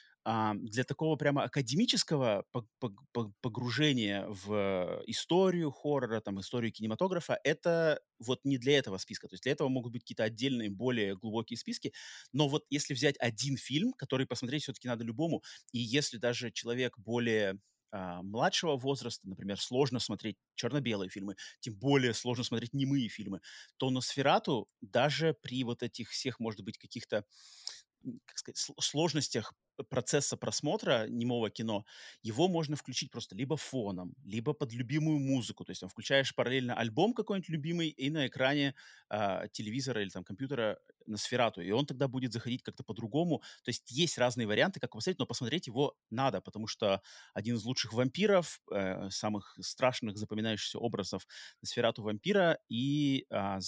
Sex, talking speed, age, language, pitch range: male, 155 wpm, 30-49, Russian, 110-140 Hz